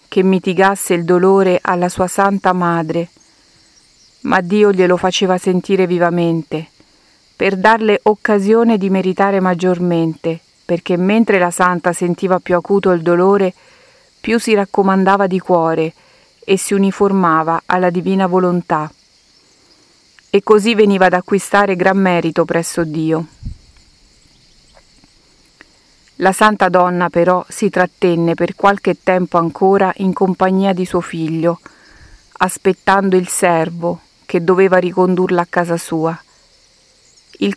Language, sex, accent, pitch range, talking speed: Italian, female, native, 175-195 Hz, 120 wpm